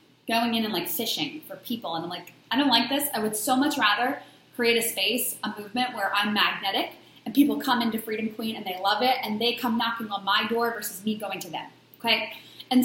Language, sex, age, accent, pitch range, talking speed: English, female, 20-39, American, 210-260 Hz, 240 wpm